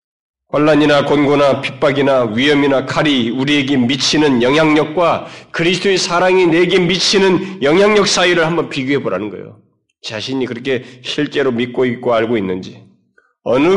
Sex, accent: male, native